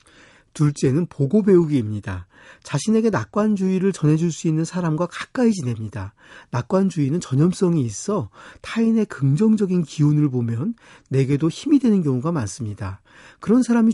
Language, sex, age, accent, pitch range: Korean, male, 40-59, native, 130-200 Hz